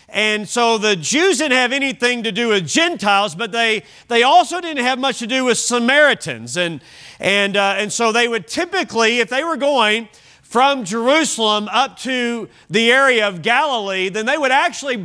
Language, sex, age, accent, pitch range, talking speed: English, male, 40-59, American, 205-260 Hz, 185 wpm